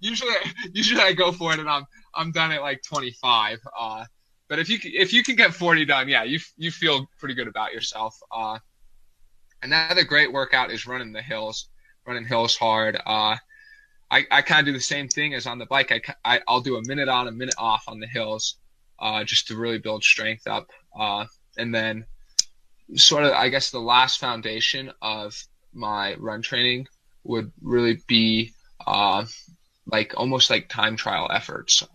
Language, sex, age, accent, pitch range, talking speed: English, male, 20-39, American, 110-145 Hz, 185 wpm